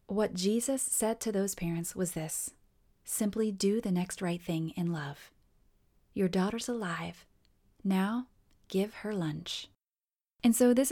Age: 30-49